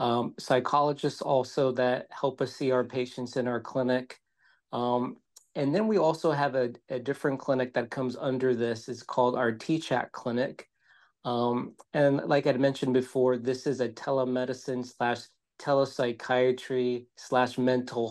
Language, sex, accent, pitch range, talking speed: English, male, American, 120-140 Hz, 150 wpm